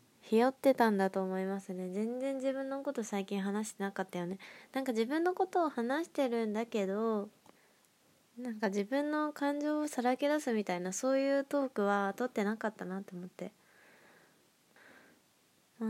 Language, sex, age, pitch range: Japanese, female, 20-39, 195-235 Hz